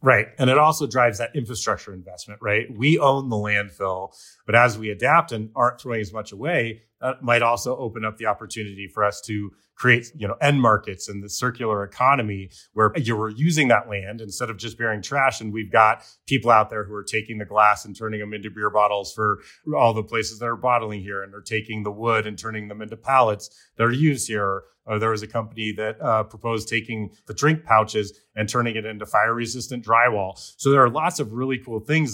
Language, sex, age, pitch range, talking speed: English, male, 30-49, 105-125 Hz, 220 wpm